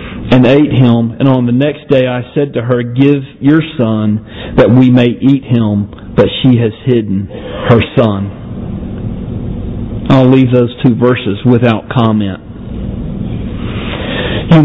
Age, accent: 40-59, American